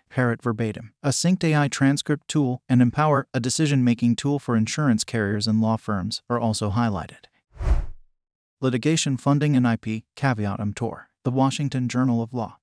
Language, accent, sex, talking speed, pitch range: English, American, male, 150 wpm, 115-140 Hz